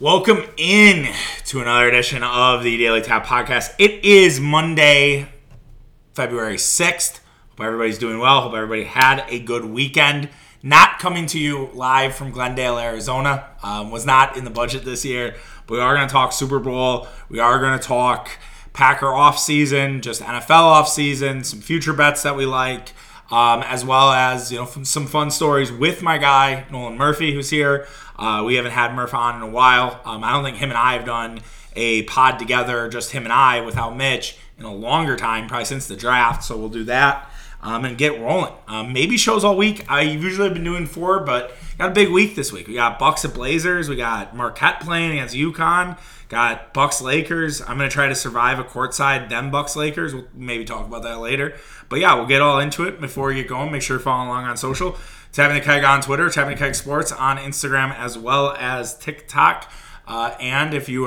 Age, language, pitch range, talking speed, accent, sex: 20-39, English, 120-145 Hz, 205 wpm, American, male